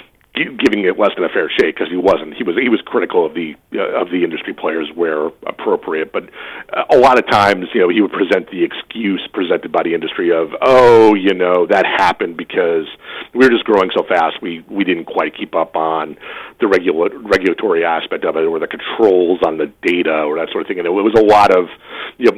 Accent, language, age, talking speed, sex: American, English, 40-59, 225 wpm, male